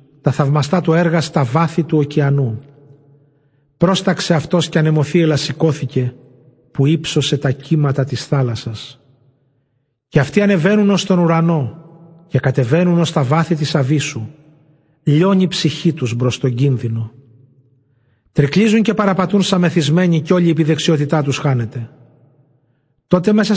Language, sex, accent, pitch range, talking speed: Greek, male, native, 140-170 Hz, 130 wpm